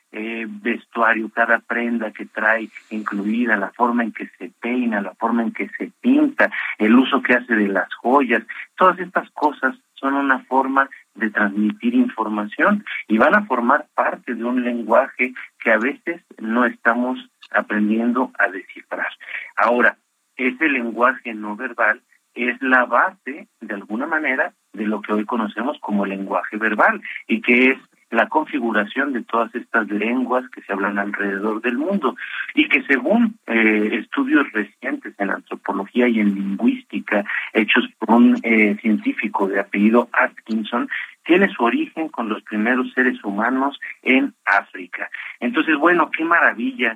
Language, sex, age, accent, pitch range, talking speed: Spanish, male, 50-69, Mexican, 110-130 Hz, 150 wpm